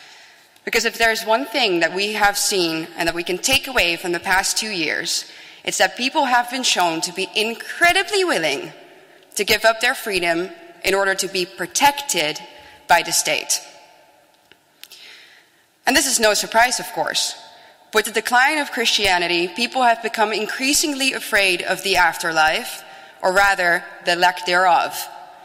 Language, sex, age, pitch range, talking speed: English, female, 20-39, 185-240 Hz, 165 wpm